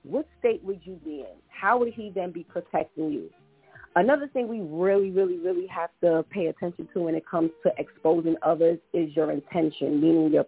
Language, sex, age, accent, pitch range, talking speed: English, female, 40-59, American, 160-195 Hz, 200 wpm